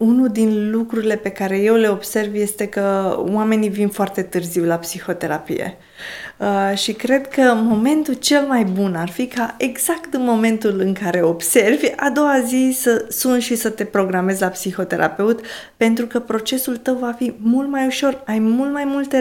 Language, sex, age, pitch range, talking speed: Romanian, female, 20-39, 200-255 Hz, 175 wpm